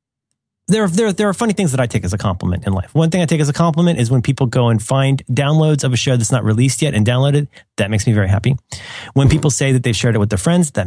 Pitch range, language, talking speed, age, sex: 115-175 Hz, English, 295 wpm, 30-49, male